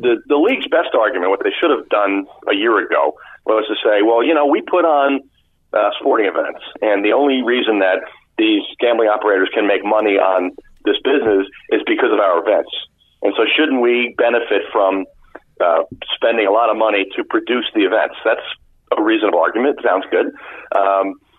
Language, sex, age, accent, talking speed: English, male, 50-69, American, 190 wpm